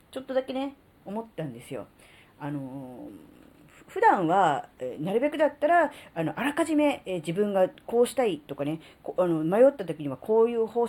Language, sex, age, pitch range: Japanese, female, 40-59, 170-285 Hz